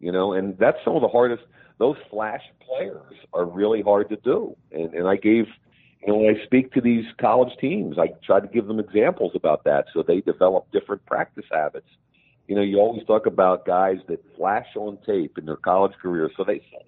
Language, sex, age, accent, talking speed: English, male, 50-69, American, 215 wpm